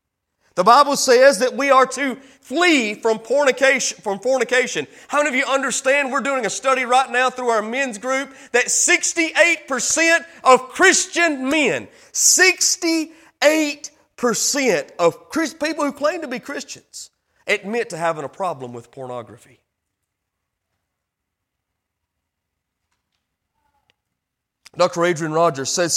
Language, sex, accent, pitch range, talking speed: English, male, American, 160-265 Hz, 115 wpm